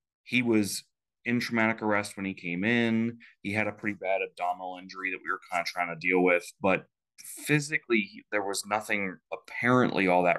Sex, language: male, English